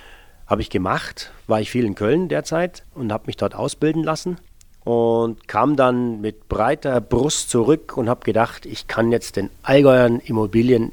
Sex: male